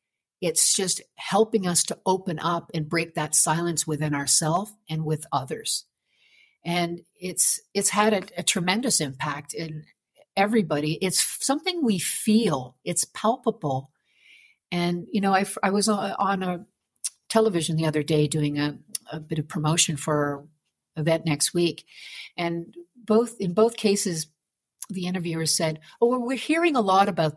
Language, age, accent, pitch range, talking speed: English, 50-69, American, 155-210 Hz, 155 wpm